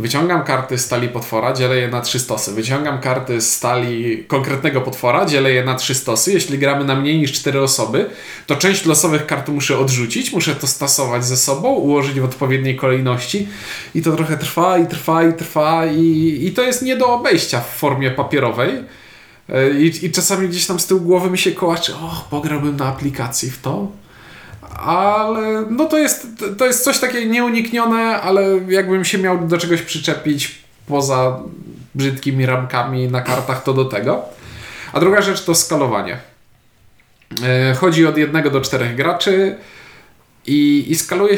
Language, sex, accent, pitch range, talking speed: Polish, male, native, 125-170 Hz, 165 wpm